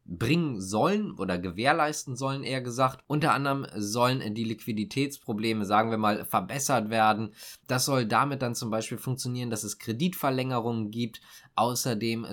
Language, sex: German, male